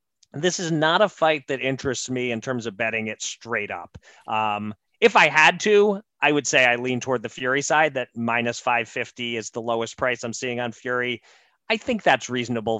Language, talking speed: English, 205 wpm